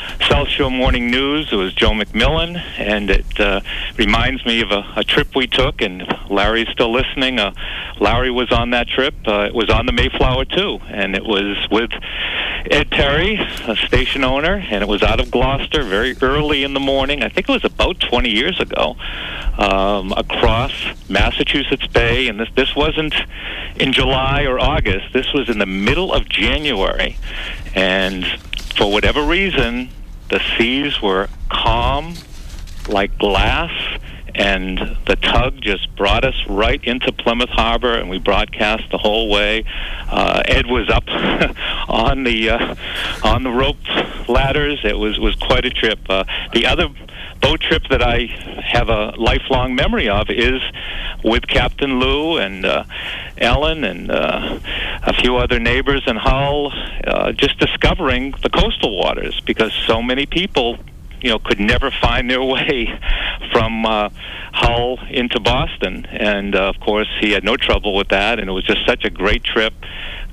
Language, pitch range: English, 100-130 Hz